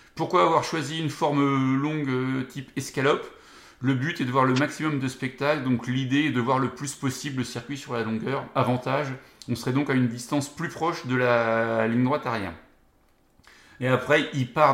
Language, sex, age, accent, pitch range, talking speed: French, male, 30-49, French, 125-150 Hz, 195 wpm